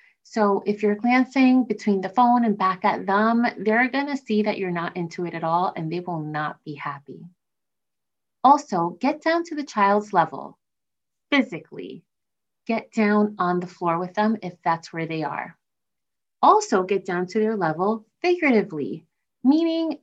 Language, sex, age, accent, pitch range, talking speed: English, female, 30-49, American, 185-255 Hz, 165 wpm